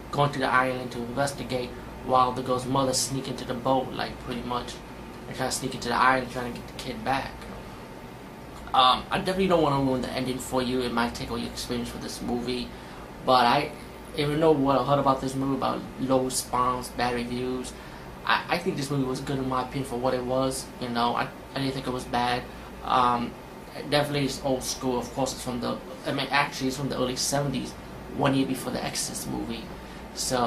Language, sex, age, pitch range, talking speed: English, male, 20-39, 125-135 Hz, 225 wpm